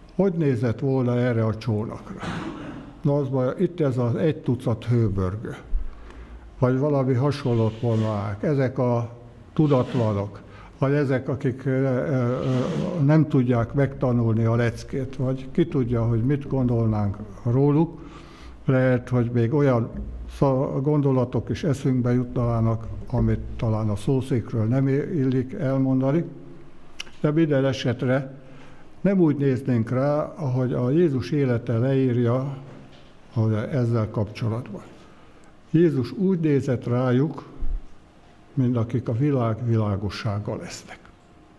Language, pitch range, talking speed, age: Hungarian, 115-135 Hz, 110 wpm, 60-79